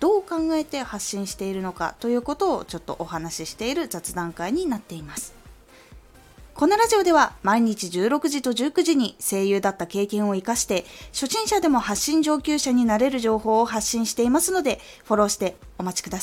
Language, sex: Japanese, female